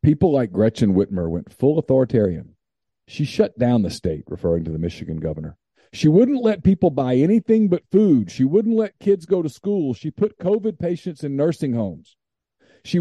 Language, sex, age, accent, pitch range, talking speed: English, male, 50-69, American, 115-190 Hz, 185 wpm